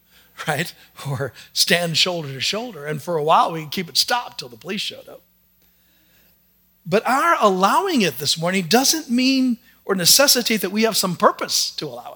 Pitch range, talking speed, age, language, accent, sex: 125-190 Hz, 185 wpm, 50-69, English, American, male